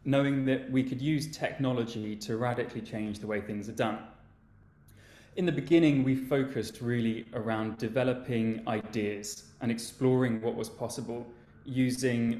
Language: English